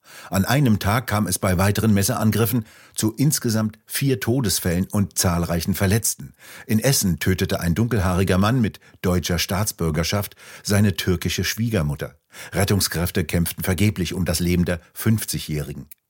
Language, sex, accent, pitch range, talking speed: German, male, German, 90-110 Hz, 130 wpm